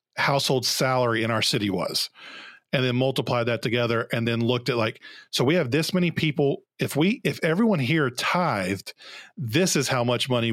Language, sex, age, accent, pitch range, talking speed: English, male, 40-59, American, 120-145 Hz, 190 wpm